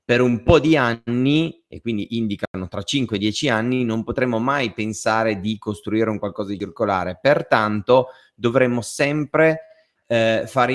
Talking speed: 155 wpm